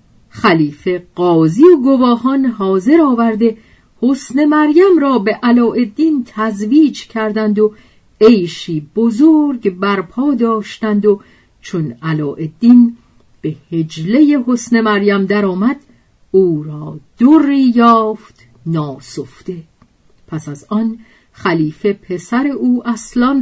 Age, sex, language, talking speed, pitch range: 50-69, female, Persian, 100 wpm, 170-255 Hz